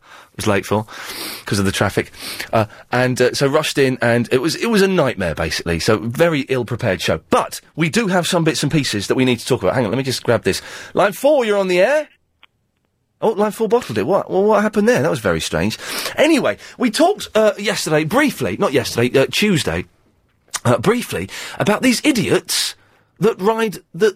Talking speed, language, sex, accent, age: 210 wpm, English, male, British, 30-49